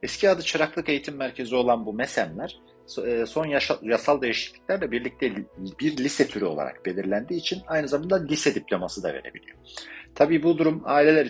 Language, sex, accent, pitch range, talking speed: Turkish, male, native, 110-160 Hz, 155 wpm